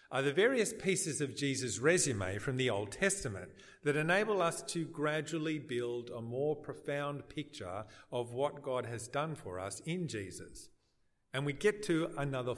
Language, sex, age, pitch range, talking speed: English, male, 50-69, 115-175 Hz, 165 wpm